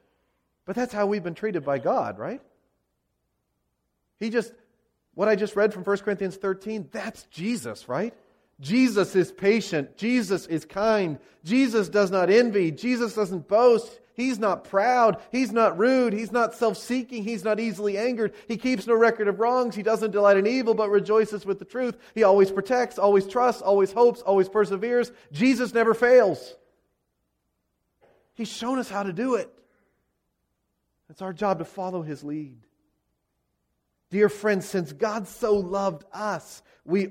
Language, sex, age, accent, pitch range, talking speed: English, male, 40-59, American, 130-220 Hz, 160 wpm